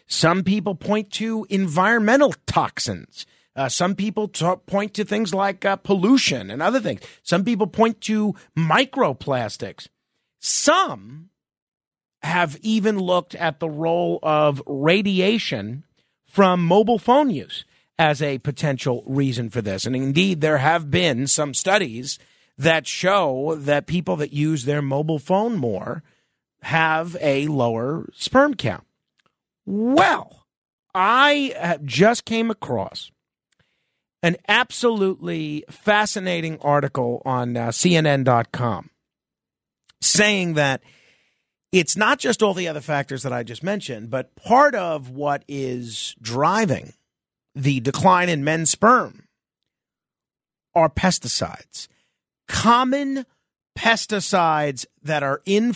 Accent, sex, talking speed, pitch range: American, male, 115 wpm, 140-205 Hz